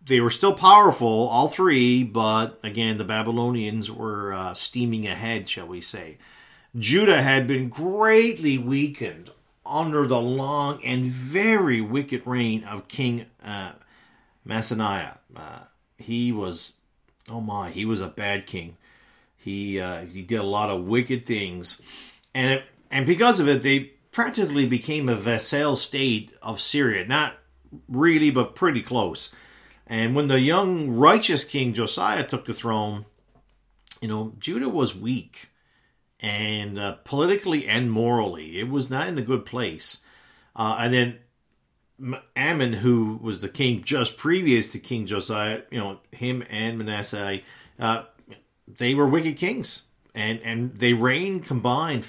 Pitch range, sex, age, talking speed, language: 110-135 Hz, male, 40-59, 145 wpm, English